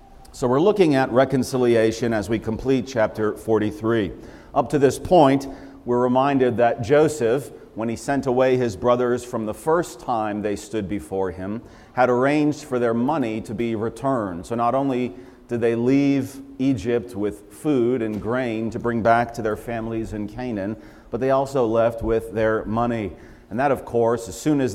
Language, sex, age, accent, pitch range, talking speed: English, male, 40-59, American, 110-130 Hz, 175 wpm